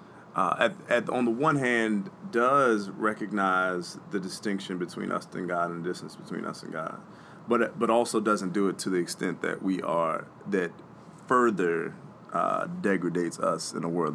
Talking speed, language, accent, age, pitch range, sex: 180 wpm, English, American, 30-49, 90-110 Hz, male